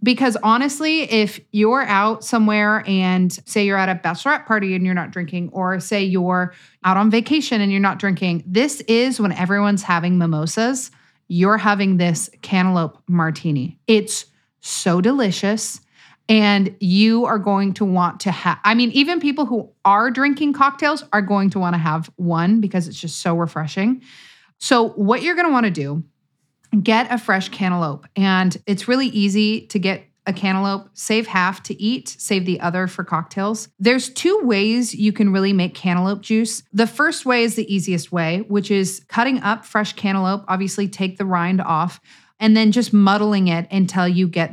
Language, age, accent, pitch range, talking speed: English, 30-49, American, 180-220 Hz, 180 wpm